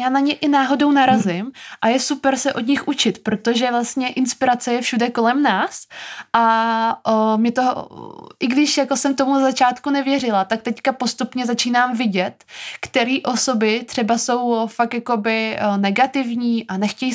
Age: 20-39